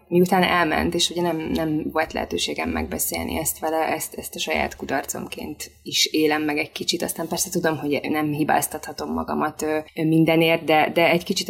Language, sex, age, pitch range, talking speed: Hungarian, female, 20-39, 155-175 Hz, 185 wpm